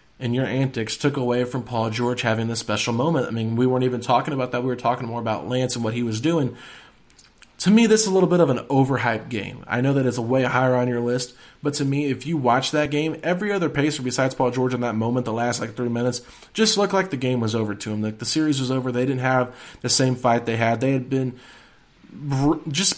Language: English